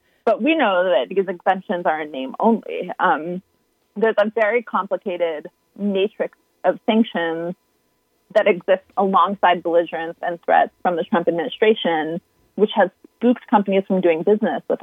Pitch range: 180-230 Hz